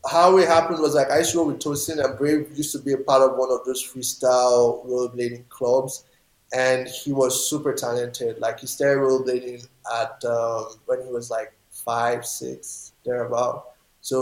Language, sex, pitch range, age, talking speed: English, male, 120-135 Hz, 20-39, 190 wpm